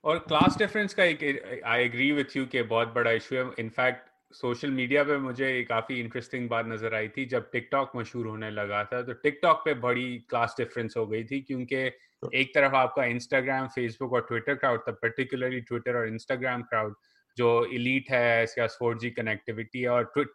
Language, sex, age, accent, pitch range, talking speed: English, male, 30-49, Indian, 115-135 Hz, 120 wpm